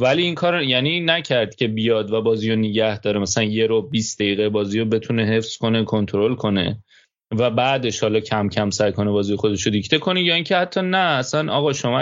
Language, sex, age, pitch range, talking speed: Persian, male, 20-39, 115-145 Hz, 205 wpm